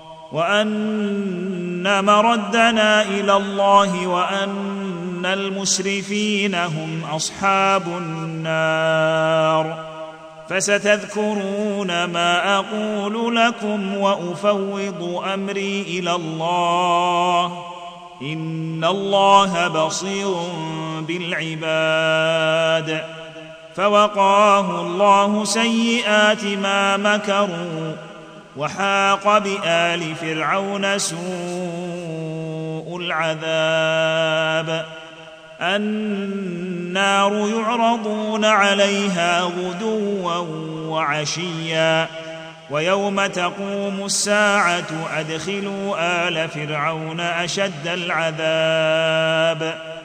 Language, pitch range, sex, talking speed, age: Arabic, 160-200 Hz, male, 55 wpm, 40-59